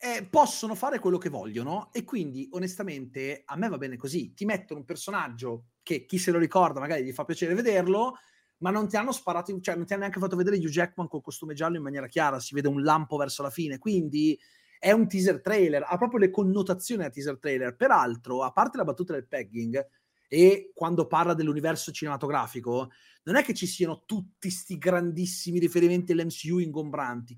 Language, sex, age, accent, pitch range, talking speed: Italian, male, 30-49, native, 140-195 Hz, 200 wpm